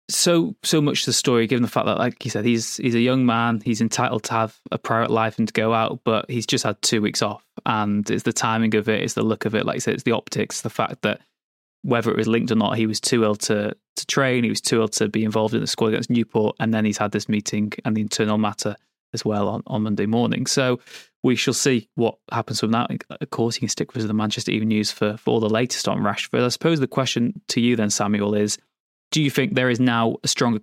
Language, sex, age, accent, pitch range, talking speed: English, male, 20-39, British, 110-125 Hz, 275 wpm